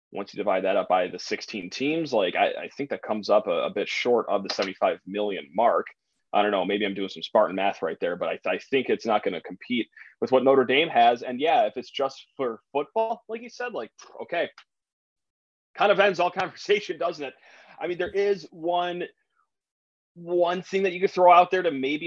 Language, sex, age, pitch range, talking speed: English, male, 30-49, 120-175 Hz, 230 wpm